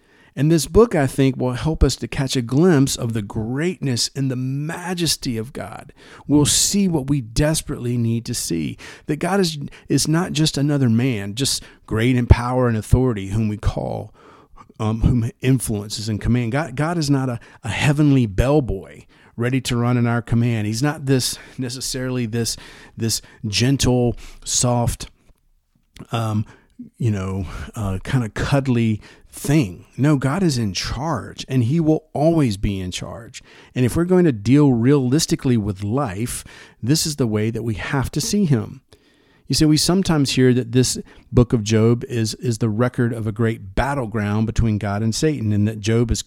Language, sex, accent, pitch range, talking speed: English, male, American, 110-145 Hz, 180 wpm